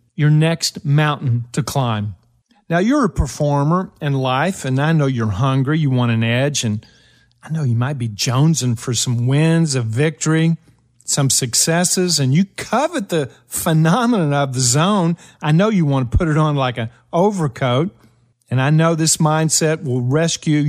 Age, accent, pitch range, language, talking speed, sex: 50-69, American, 130-165 Hz, English, 175 wpm, male